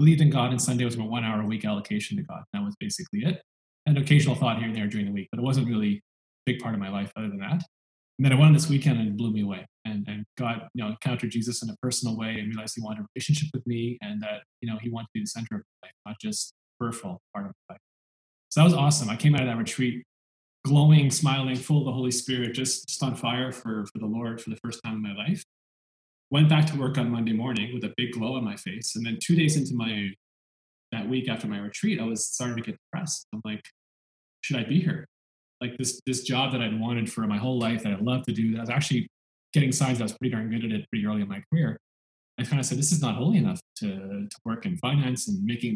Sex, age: male, 20-39